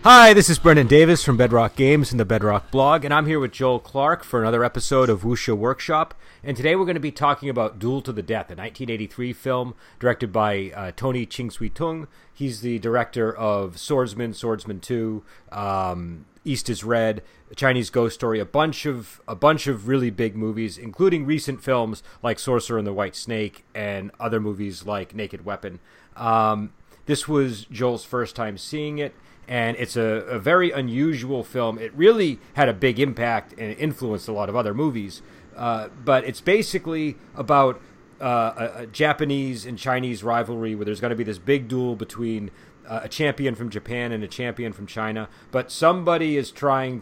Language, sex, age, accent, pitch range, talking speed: English, male, 30-49, American, 110-135 Hz, 180 wpm